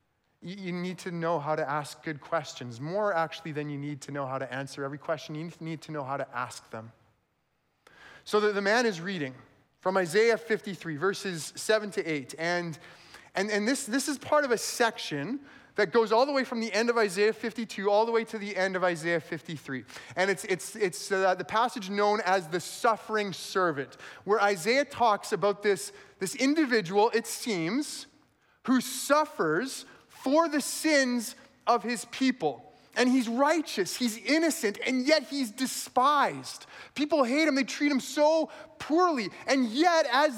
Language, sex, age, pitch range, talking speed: English, male, 30-49, 180-280 Hz, 180 wpm